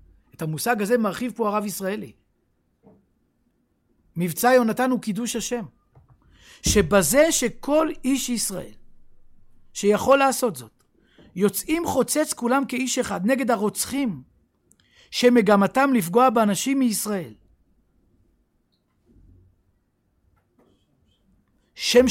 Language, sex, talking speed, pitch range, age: Hebrew, male, 80 wpm, 175-245 Hz, 60-79